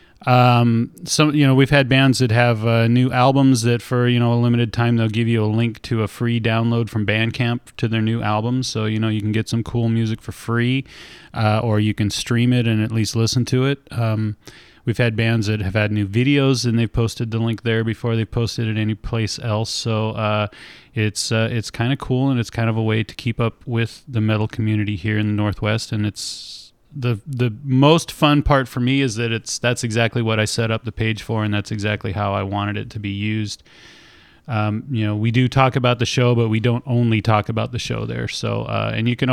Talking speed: 240 wpm